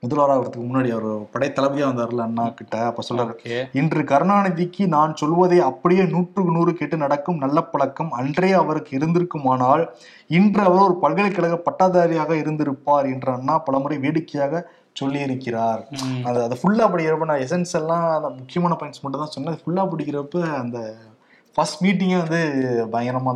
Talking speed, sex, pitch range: 110 wpm, male, 130-175 Hz